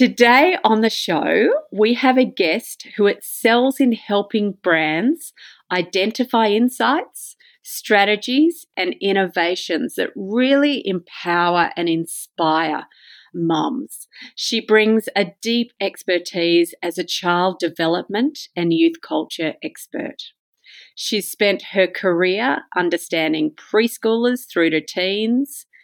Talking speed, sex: 105 wpm, female